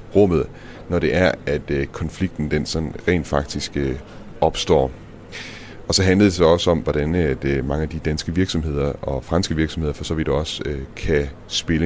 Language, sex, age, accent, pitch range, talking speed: Danish, male, 30-49, native, 75-95 Hz, 165 wpm